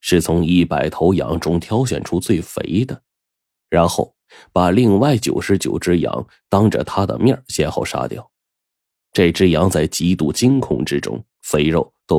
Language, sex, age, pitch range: Chinese, male, 20-39, 80-95 Hz